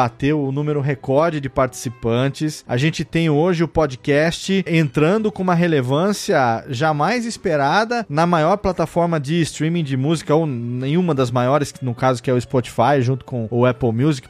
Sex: male